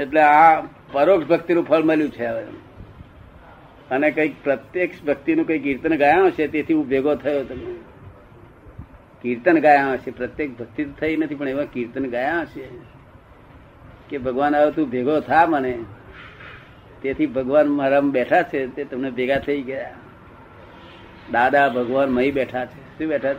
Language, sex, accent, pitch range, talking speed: Gujarati, male, native, 125-155 Hz, 80 wpm